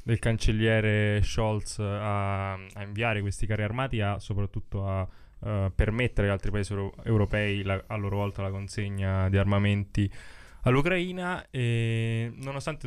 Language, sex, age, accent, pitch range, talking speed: Italian, male, 10-29, native, 100-110 Hz, 125 wpm